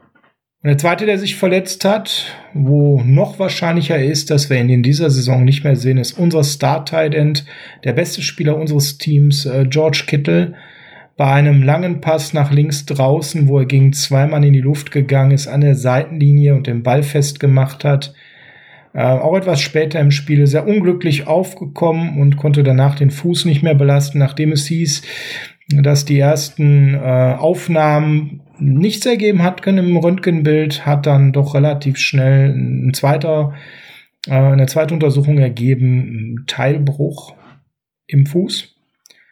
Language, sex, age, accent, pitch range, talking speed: German, male, 40-59, German, 140-160 Hz, 155 wpm